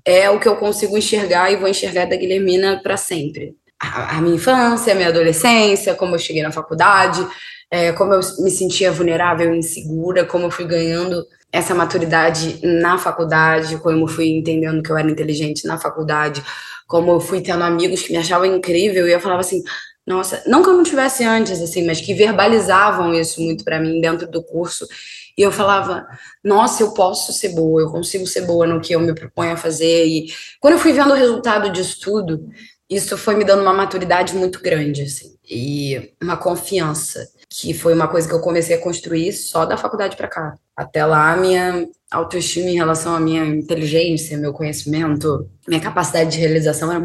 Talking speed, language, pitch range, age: 190 wpm, Portuguese, 165-185 Hz, 20-39